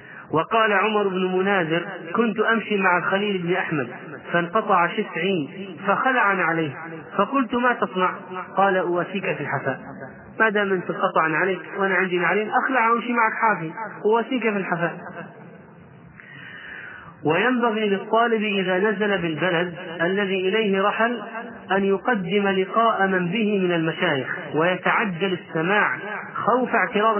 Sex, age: male, 30-49